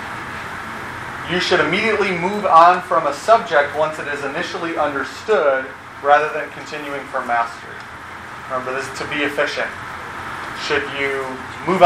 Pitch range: 150-195 Hz